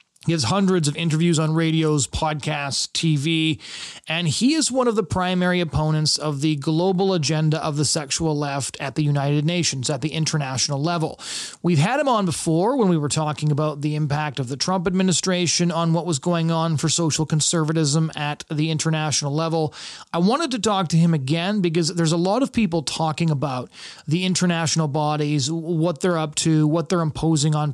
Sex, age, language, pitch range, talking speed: male, 30-49, English, 150-175 Hz, 190 wpm